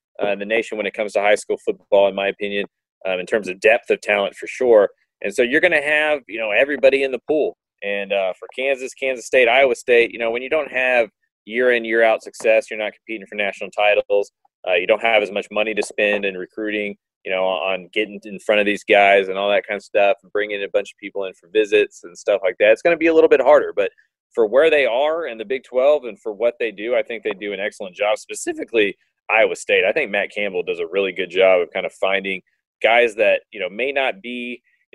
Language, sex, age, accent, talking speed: English, male, 30-49, American, 260 wpm